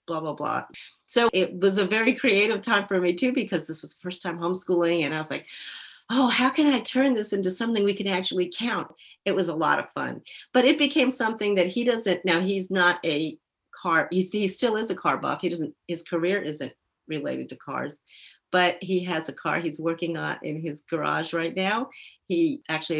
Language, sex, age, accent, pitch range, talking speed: English, female, 40-59, American, 165-205 Hz, 220 wpm